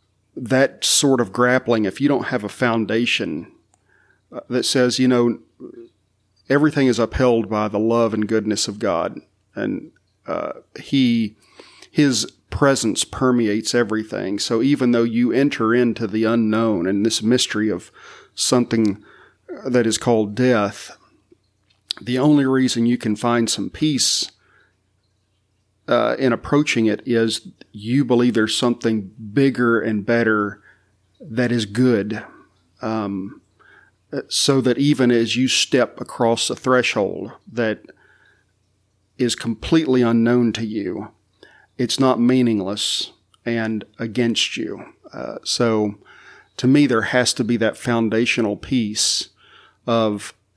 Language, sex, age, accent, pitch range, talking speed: English, male, 40-59, American, 110-125 Hz, 125 wpm